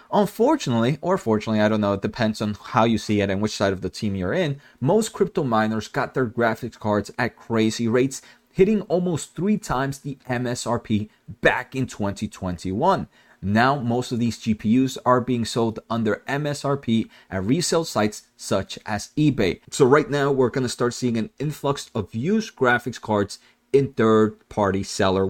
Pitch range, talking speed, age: 110-145 Hz, 175 wpm, 30-49